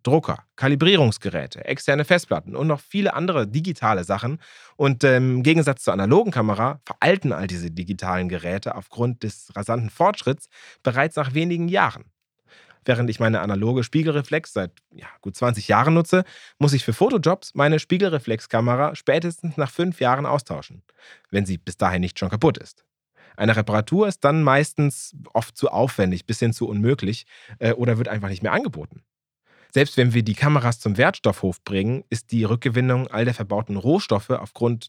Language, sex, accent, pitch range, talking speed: German, male, German, 110-145 Hz, 165 wpm